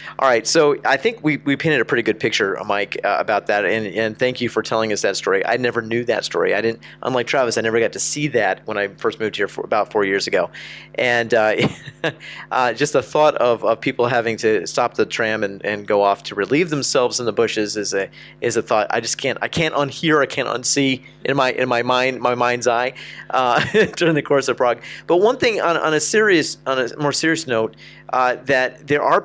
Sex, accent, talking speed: male, American, 240 wpm